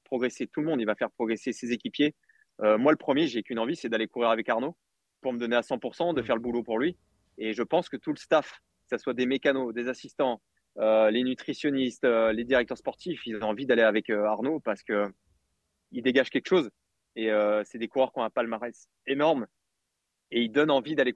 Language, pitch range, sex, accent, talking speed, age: French, 115-140 Hz, male, French, 230 wpm, 20-39